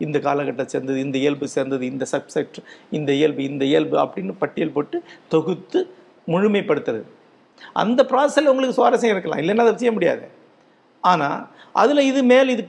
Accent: native